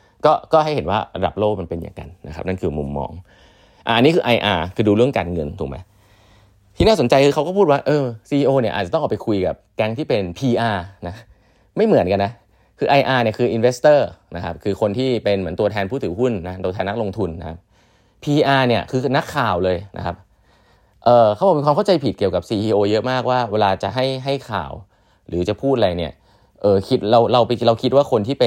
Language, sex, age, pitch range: Thai, male, 20-39, 95-130 Hz